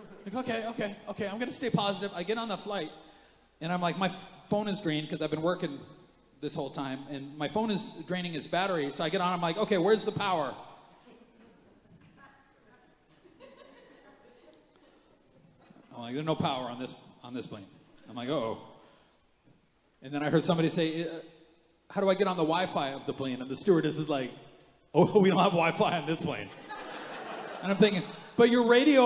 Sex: male